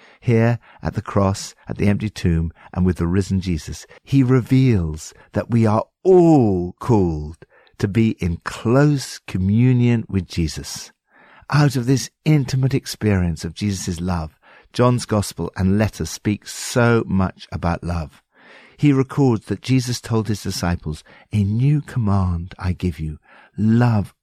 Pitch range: 85-120 Hz